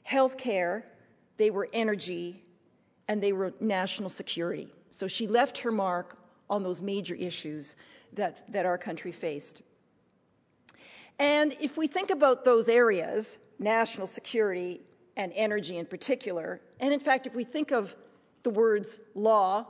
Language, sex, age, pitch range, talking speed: English, female, 50-69, 185-250 Hz, 145 wpm